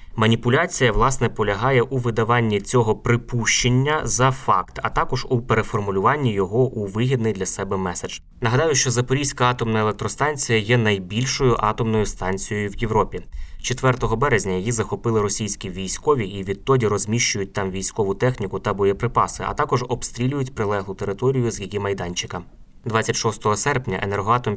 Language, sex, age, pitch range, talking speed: Ukrainian, male, 20-39, 100-125 Hz, 135 wpm